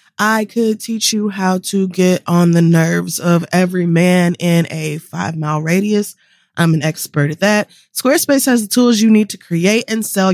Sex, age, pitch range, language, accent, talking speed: female, 20-39, 175-230 Hz, English, American, 185 wpm